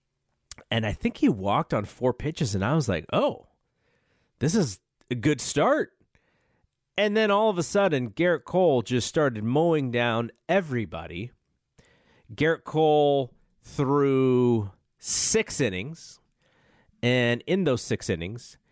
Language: English